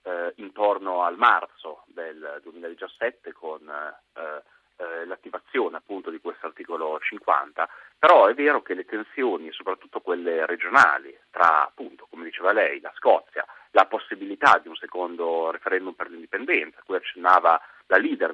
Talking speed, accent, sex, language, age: 145 wpm, native, male, Italian, 30-49